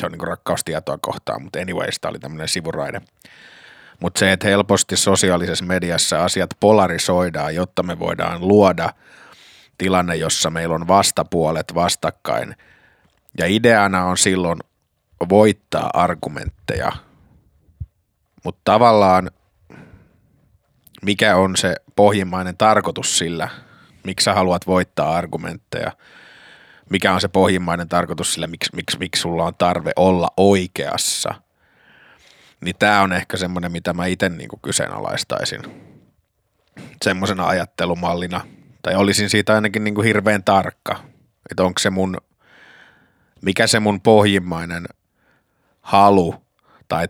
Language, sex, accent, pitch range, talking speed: Finnish, male, native, 90-100 Hz, 115 wpm